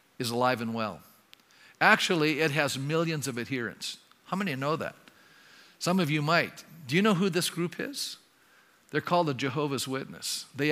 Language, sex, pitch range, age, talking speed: English, male, 140-185 Hz, 50-69, 175 wpm